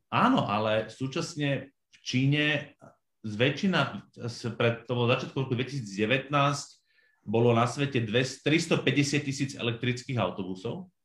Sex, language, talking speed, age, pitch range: male, Slovak, 100 wpm, 30-49, 115-150 Hz